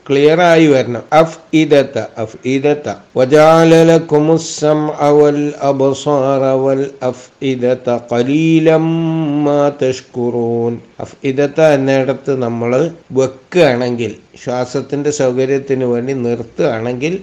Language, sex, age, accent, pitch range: Malayalam, male, 60-79, native, 125-150 Hz